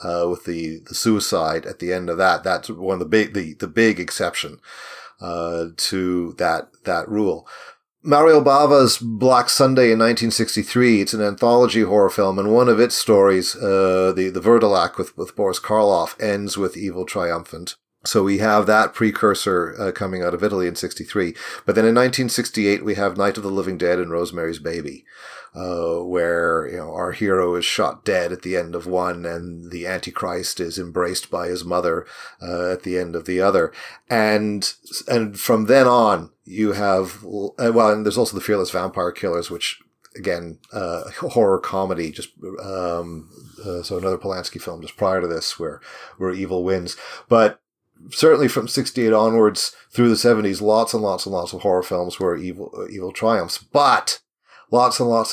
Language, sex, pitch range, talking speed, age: English, male, 90-115 Hz, 180 wpm, 40-59